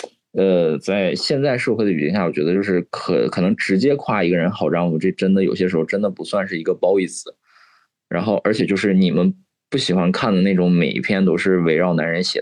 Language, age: Chinese, 20-39